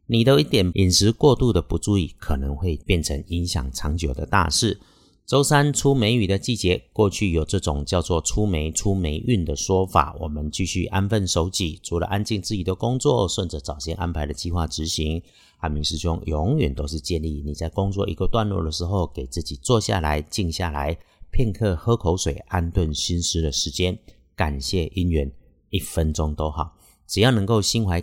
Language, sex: Chinese, male